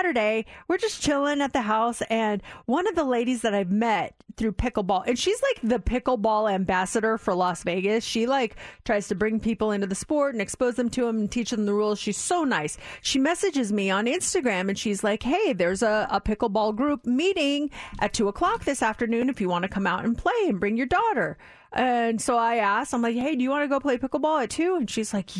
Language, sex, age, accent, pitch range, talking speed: English, female, 30-49, American, 210-265 Hz, 235 wpm